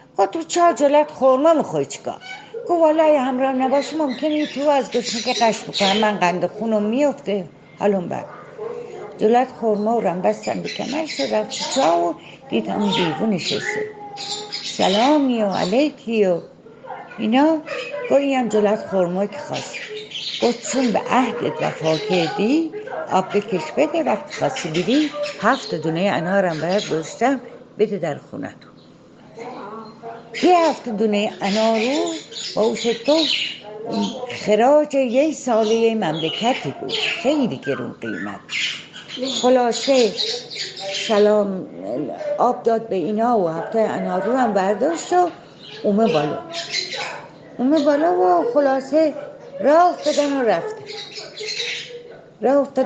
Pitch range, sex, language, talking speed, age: 210-310 Hz, female, Persian, 120 wpm, 60-79